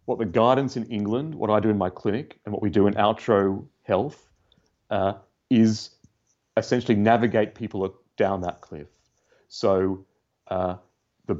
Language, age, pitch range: English, 40-59, 95-115 Hz